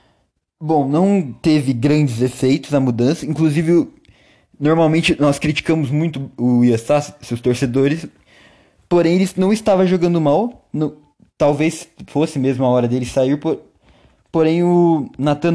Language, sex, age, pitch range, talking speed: Portuguese, male, 20-39, 135-170 Hz, 130 wpm